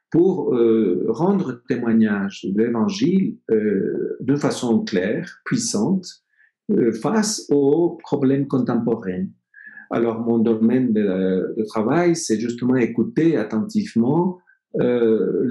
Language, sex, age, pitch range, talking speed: English, male, 50-69, 110-170 Hz, 110 wpm